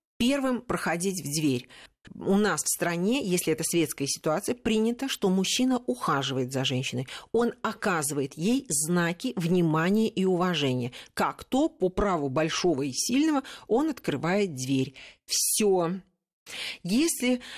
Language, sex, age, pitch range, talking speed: Russian, female, 40-59, 160-235 Hz, 130 wpm